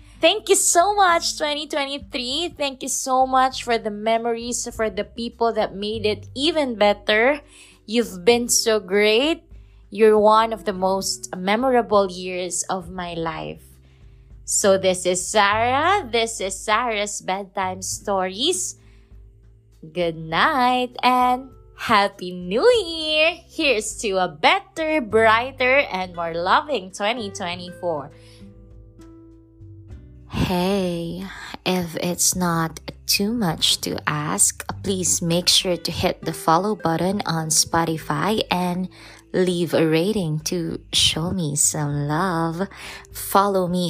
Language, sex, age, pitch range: Filipino, female, 20-39, 160-220 Hz